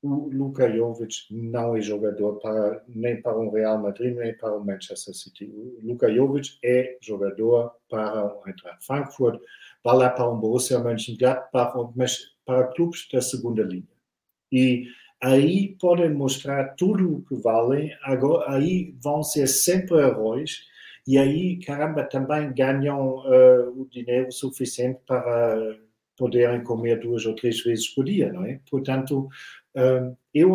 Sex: male